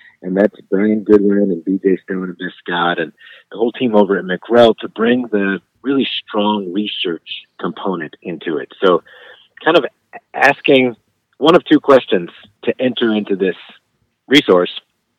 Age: 30-49